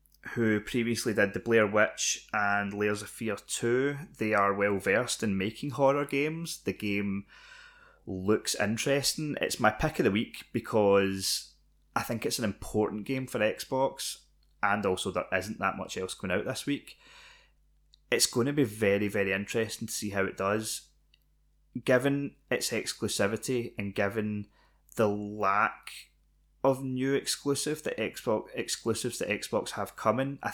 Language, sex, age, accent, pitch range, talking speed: English, male, 20-39, British, 100-125 Hz, 155 wpm